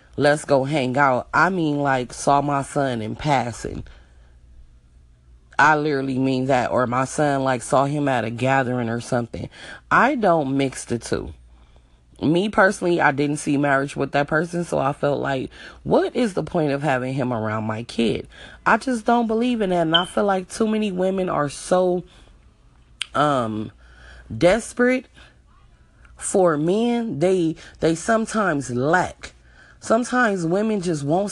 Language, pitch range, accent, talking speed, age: English, 135-210 Hz, American, 155 wpm, 30-49